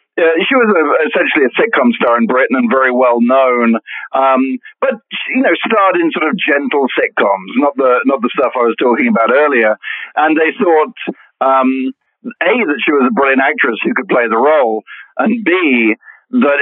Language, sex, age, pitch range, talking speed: English, male, 50-69, 125-195 Hz, 190 wpm